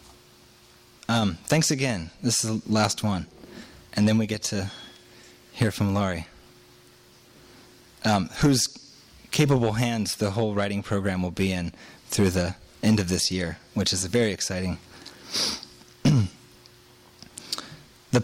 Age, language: 20-39, English